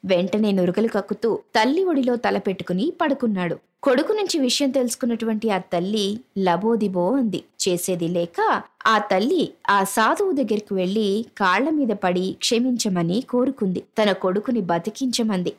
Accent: native